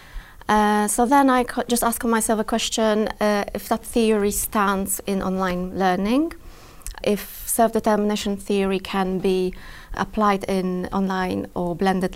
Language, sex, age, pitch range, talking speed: English, female, 20-39, 195-230 Hz, 140 wpm